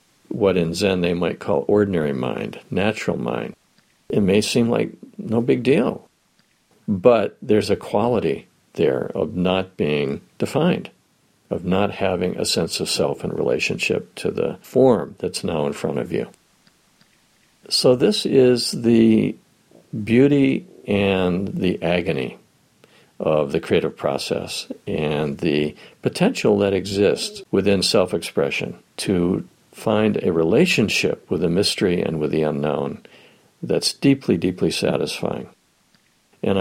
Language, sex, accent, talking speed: English, male, American, 130 wpm